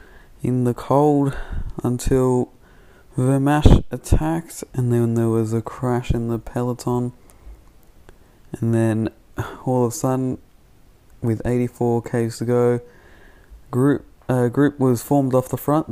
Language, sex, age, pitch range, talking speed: English, male, 20-39, 110-125 Hz, 125 wpm